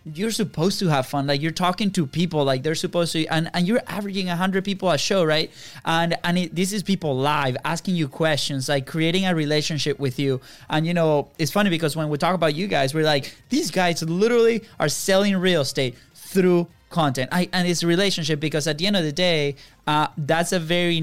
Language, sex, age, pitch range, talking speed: English, male, 20-39, 140-175 Hz, 225 wpm